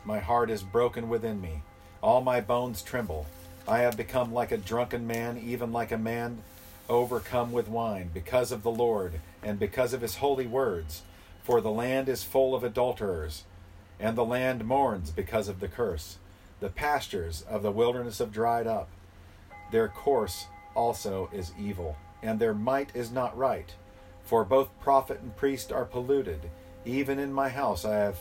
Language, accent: English, American